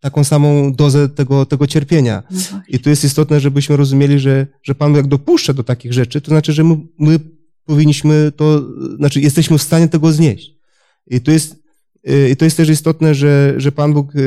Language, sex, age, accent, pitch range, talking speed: Polish, male, 30-49, native, 135-160 Hz, 195 wpm